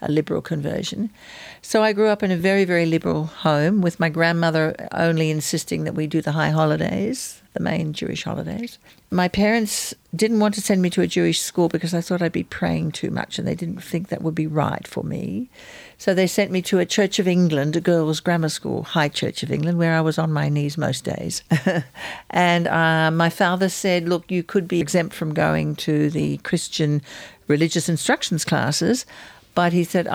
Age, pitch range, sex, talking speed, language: 60-79, 155-180 Hz, female, 205 wpm, English